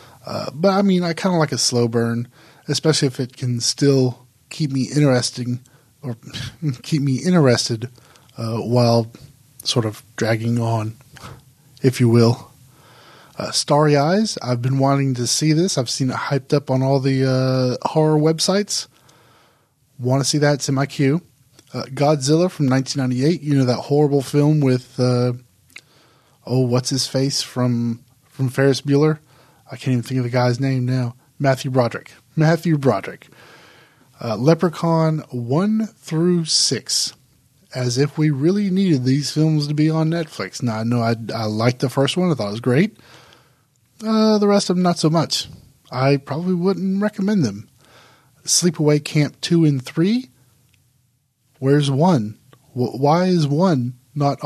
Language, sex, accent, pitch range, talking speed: English, male, American, 125-155 Hz, 160 wpm